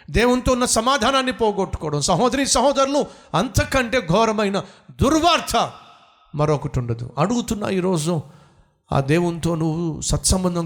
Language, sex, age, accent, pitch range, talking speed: Telugu, male, 50-69, native, 130-175 Hz, 95 wpm